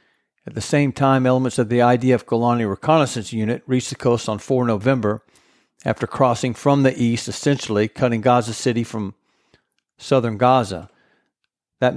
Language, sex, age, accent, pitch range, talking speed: English, male, 50-69, American, 115-135 Hz, 150 wpm